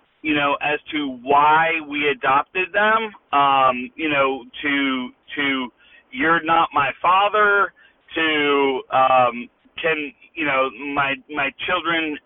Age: 40-59